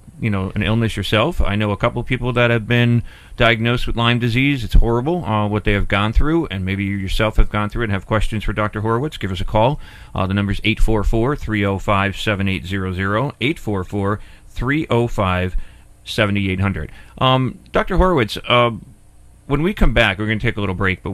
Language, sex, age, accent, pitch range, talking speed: English, male, 40-59, American, 95-115 Hz, 195 wpm